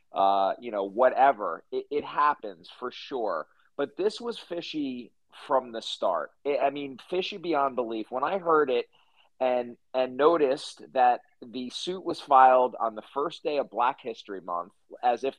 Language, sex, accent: English, male, American